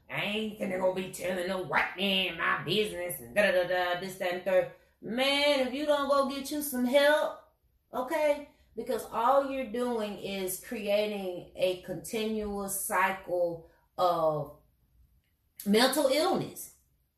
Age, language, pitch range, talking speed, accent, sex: 30-49, English, 180-235 Hz, 145 wpm, American, female